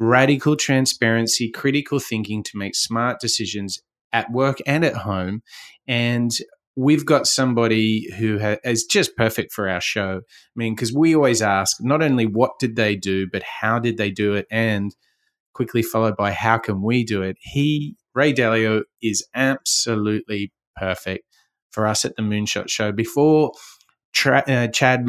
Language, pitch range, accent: English, 110-135 Hz, Australian